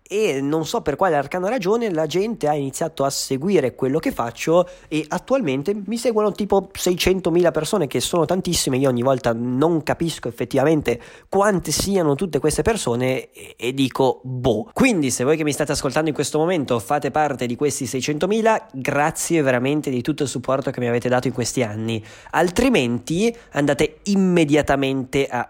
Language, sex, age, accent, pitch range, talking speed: Italian, male, 20-39, native, 125-155 Hz, 170 wpm